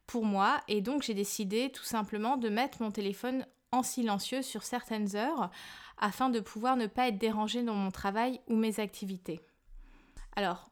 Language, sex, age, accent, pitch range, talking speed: French, female, 20-39, French, 200-245 Hz, 175 wpm